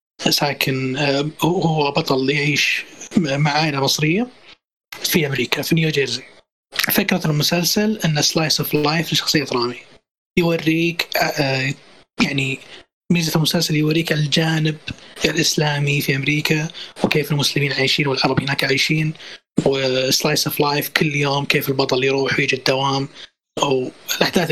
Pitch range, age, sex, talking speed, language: 140-175 Hz, 20-39, male, 115 wpm, Arabic